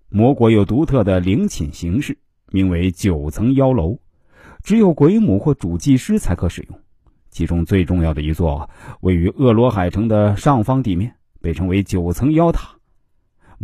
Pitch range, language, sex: 90-135 Hz, Chinese, male